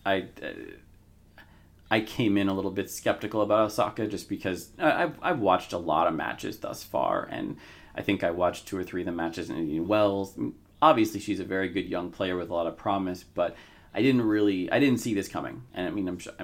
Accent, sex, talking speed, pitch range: American, male, 230 wpm, 85-105 Hz